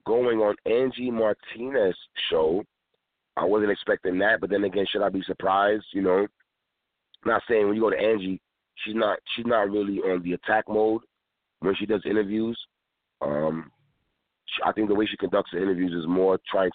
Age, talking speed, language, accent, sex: 40-59, 185 wpm, English, American, male